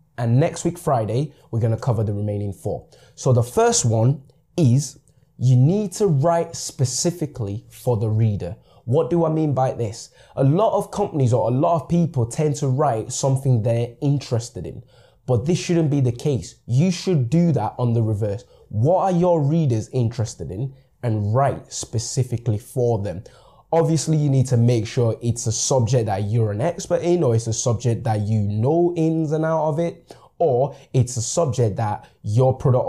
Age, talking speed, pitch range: 20-39, 190 wpm, 115-150 Hz